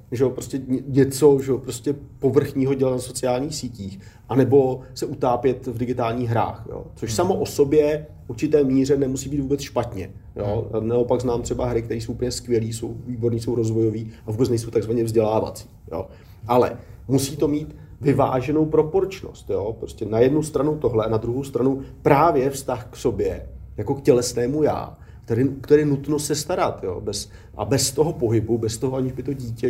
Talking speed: 180 wpm